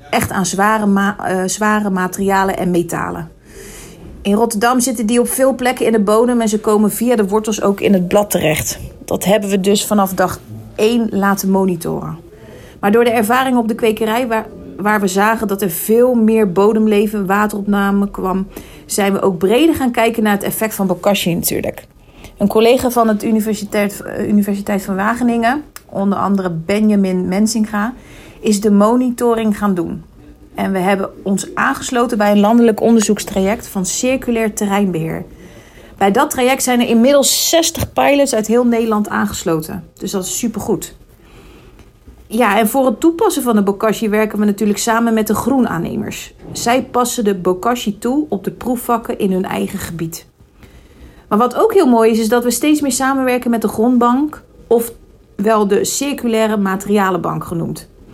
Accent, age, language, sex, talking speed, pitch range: Dutch, 40-59, Dutch, female, 165 wpm, 200-235 Hz